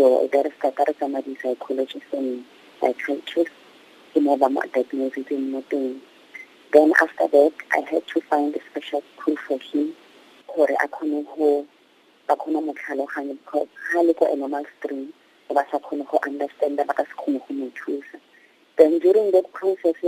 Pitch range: 150-190 Hz